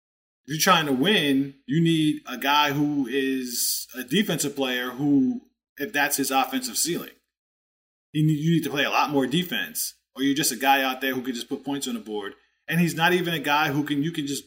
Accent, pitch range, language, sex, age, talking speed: American, 135-165 Hz, English, male, 20-39, 225 wpm